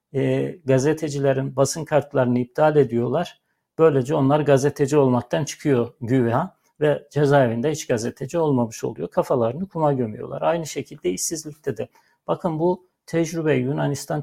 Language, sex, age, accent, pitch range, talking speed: Turkish, male, 60-79, native, 130-150 Hz, 120 wpm